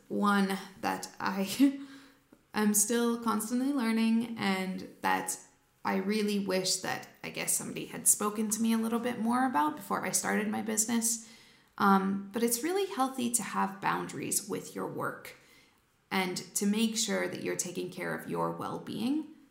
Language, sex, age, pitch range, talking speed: English, female, 20-39, 195-235 Hz, 160 wpm